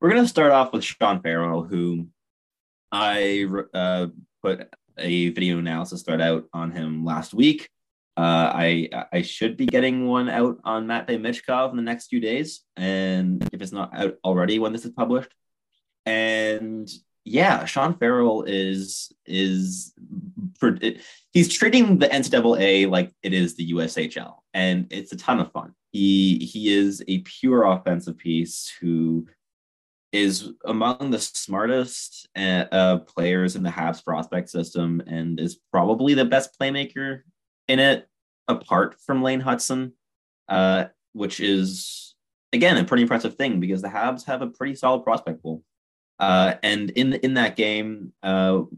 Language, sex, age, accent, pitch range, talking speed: English, male, 20-39, American, 90-125 Hz, 155 wpm